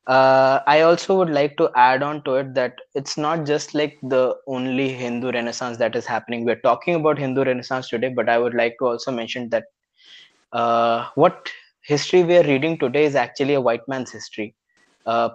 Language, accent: English, Indian